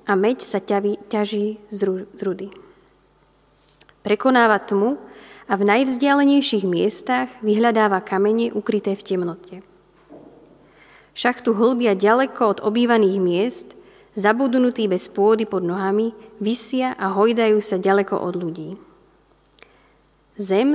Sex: female